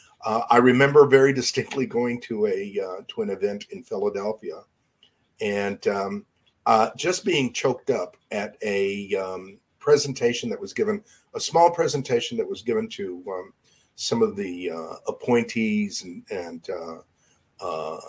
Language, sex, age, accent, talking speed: English, male, 50-69, American, 145 wpm